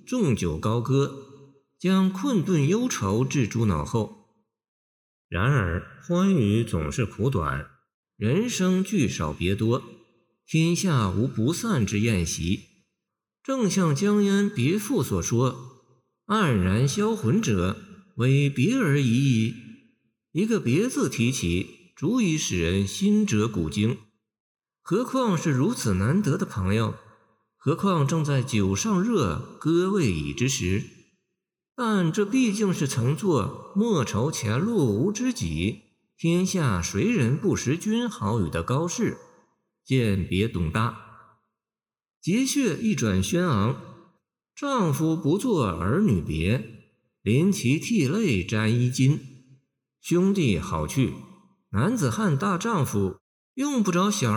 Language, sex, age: Chinese, male, 50-69